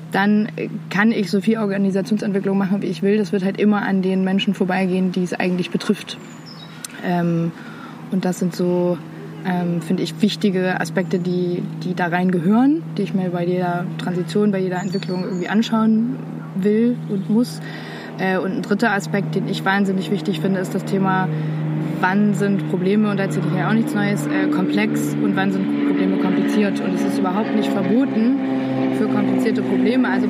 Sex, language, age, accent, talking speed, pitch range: female, German, 20-39, German, 175 wpm, 185-210 Hz